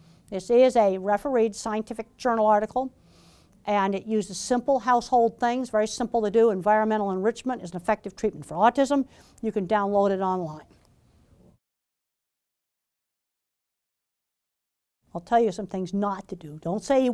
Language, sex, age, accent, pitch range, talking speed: English, female, 50-69, American, 190-230 Hz, 145 wpm